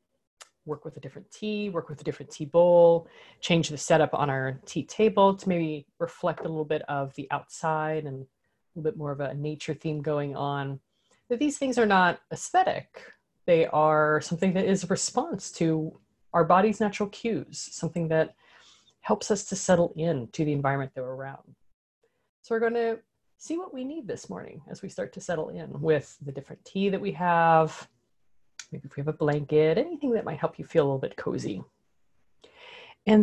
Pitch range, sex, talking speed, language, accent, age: 155-230 Hz, female, 195 wpm, English, American, 30-49